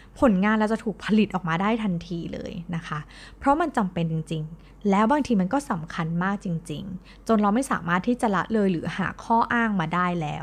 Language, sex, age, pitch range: Thai, female, 20-39, 170-240 Hz